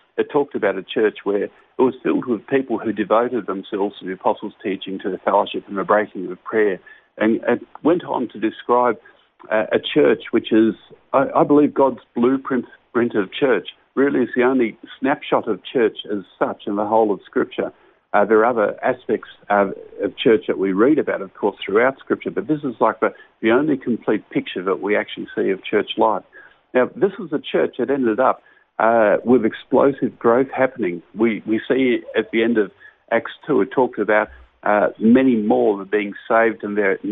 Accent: Australian